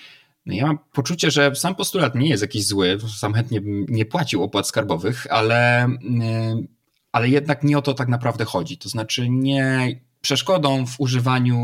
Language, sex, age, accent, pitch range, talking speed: Polish, male, 20-39, native, 115-145 Hz, 160 wpm